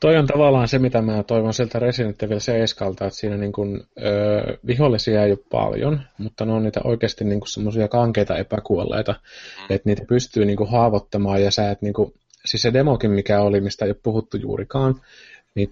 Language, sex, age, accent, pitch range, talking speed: Finnish, male, 30-49, native, 105-125 Hz, 195 wpm